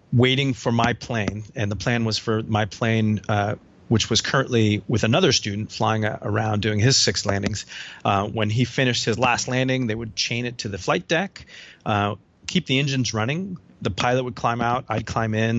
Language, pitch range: English, 105-125 Hz